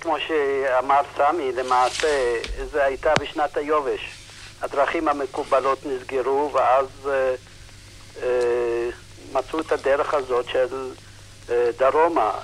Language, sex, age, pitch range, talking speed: Hebrew, male, 60-79, 120-180 Hz, 95 wpm